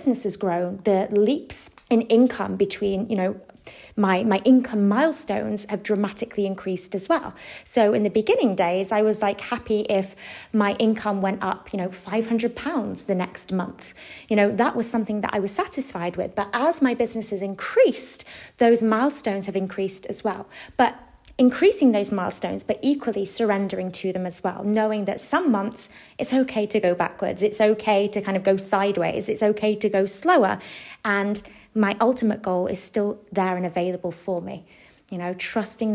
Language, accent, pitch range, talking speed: English, British, 195-230 Hz, 180 wpm